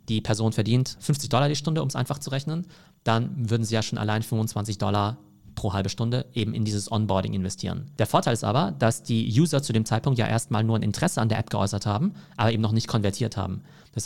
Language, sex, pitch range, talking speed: German, male, 105-135 Hz, 235 wpm